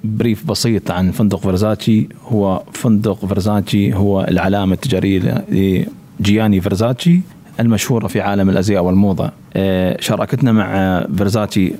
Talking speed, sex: 105 wpm, male